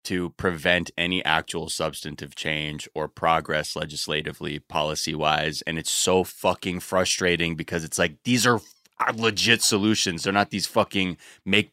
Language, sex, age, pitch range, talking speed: English, male, 20-39, 90-115 Hz, 150 wpm